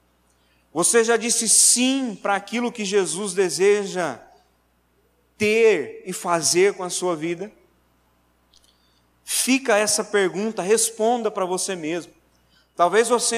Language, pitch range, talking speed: Portuguese, 150-235 Hz, 110 wpm